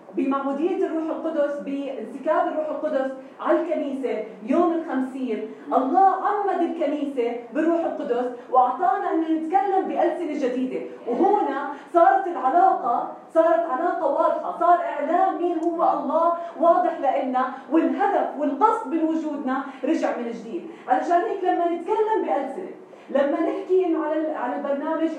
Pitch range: 290-355 Hz